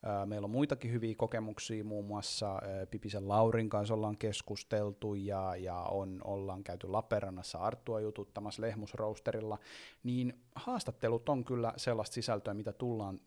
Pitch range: 100-125 Hz